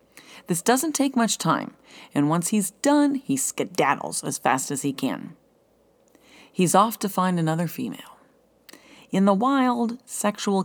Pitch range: 145-200 Hz